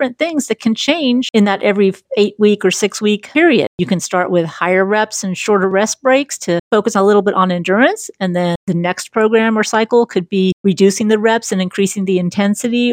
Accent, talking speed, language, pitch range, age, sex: American, 215 wpm, English, 185-240 Hz, 40-59, female